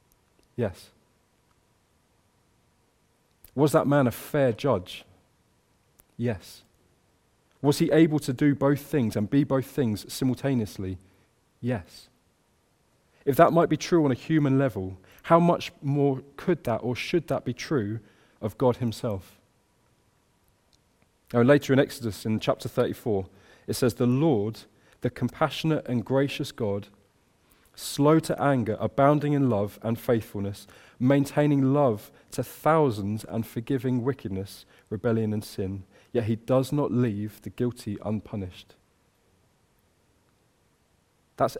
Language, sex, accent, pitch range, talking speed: English, male, British, 105-140 Hz, 125 wpm